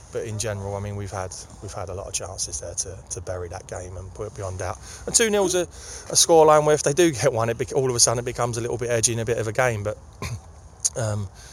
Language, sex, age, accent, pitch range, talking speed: English, male, 20-39, British, 95-115 Hz, 295 wpm